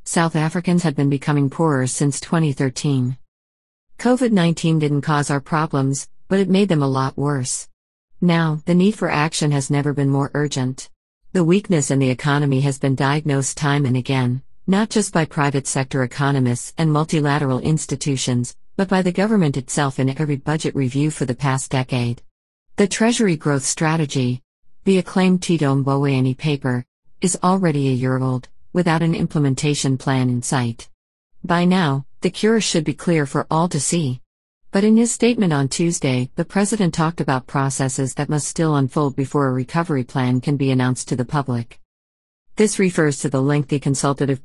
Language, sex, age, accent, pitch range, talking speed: English, female, 50-69, American, 135-170 Hz, 170 wpm